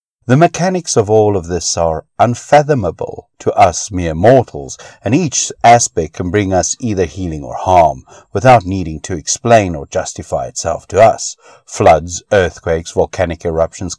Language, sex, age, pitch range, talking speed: English, male, 60-79, 85-115 Hz, 150 wpm